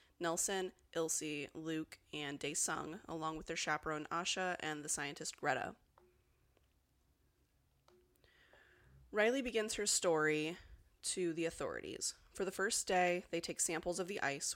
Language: English